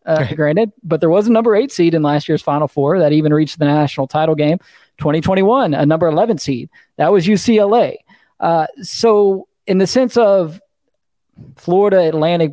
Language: English